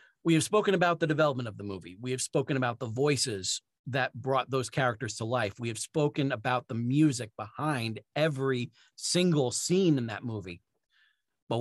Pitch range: 120-145 Hz